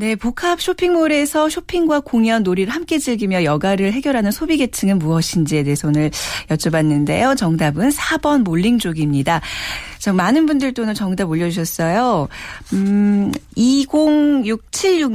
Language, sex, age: Korean, female, 40-59